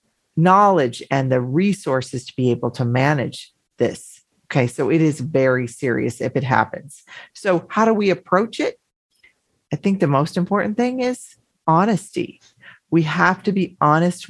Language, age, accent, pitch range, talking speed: English, 40-59, American, 140-190 Hz, 160 wpm